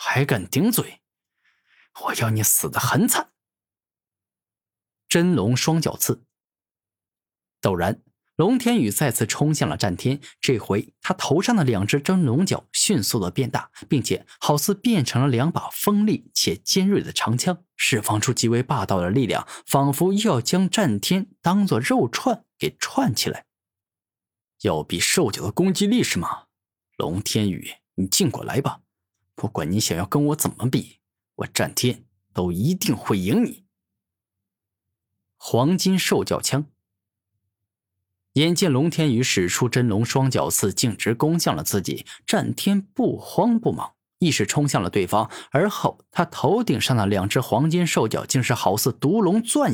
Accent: native